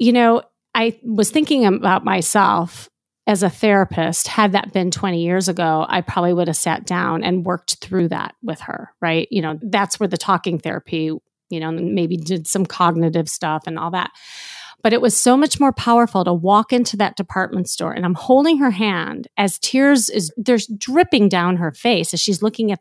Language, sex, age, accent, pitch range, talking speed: English, female, 30-49, American, 175-225 Hz, 200 wpm